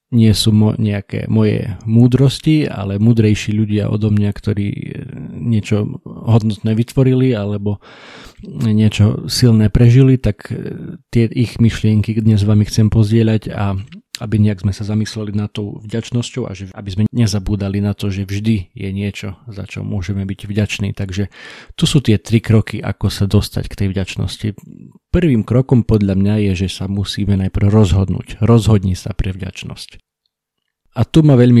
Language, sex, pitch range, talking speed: Slovak, male, 100-115 Hz, 160 wpm